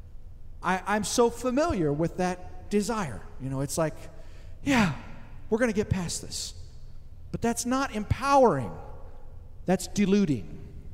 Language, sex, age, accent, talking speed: English, male, 50-69, American, 125 wpm